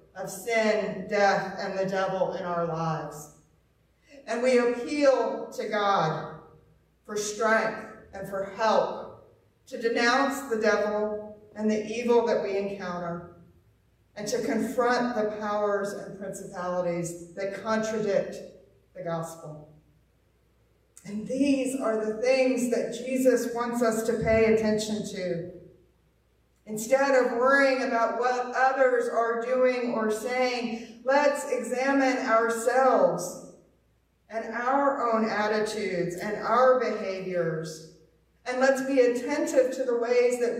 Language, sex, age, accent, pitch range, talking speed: English, female, 40-59, American, 195-250 Hz, 120 wpm